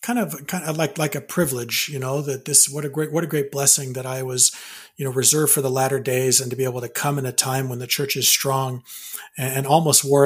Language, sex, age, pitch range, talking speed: English, male, 40-59, 130-150 Hz, 270 wpm